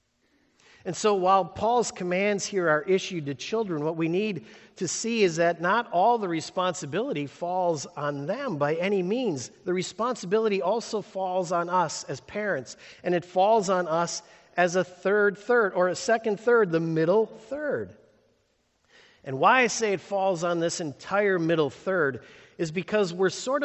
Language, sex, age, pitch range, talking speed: English, male, 50-69, 175-225 Hz, 165 wpm